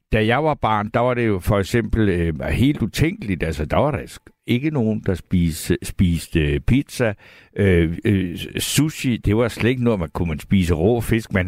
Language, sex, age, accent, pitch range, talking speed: Danish, male, 60-79, native, 95-130 Hz, 195 wpm